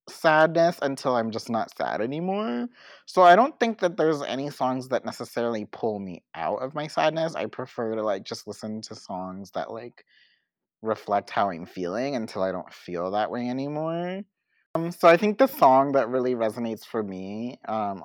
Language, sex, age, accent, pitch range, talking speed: English, male, 30-49, American, 110-145 Hz, 185 wpm